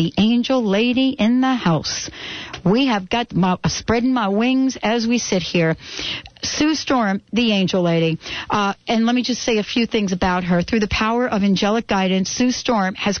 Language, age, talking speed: English, 60-79, 185 wpm